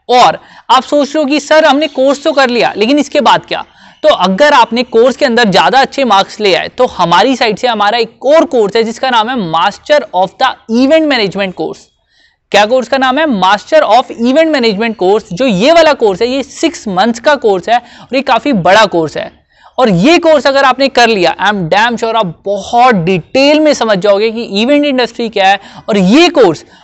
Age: 20-39